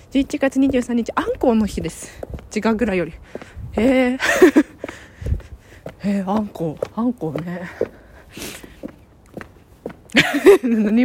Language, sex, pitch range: Japanese, female, 185-270 Hz